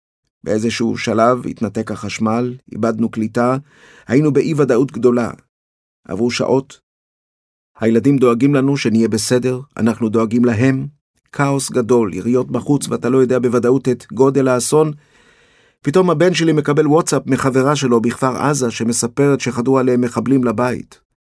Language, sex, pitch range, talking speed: Hebrew, male, 115-135 Hz, 125 wpm